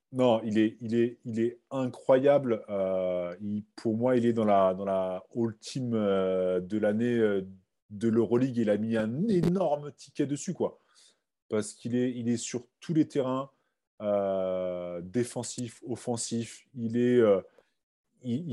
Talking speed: 150 wpm